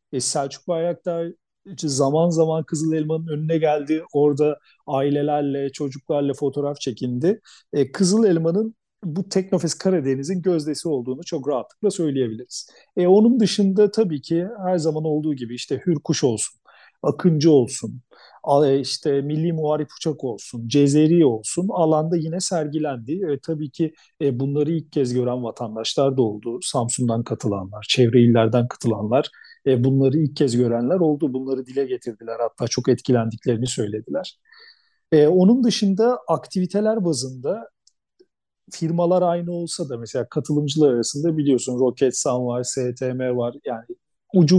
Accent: native